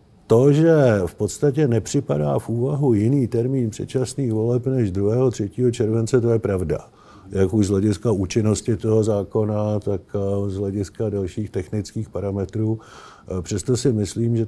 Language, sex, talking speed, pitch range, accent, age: Czech, male, 145 wpm, 100-115 Hz, native, 50-69